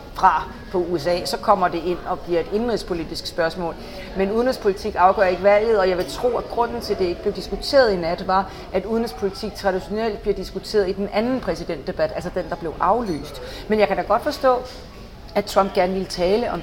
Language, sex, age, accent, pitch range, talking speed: English, female, 40-59, Danish, 185-215 Hz, 210 wpm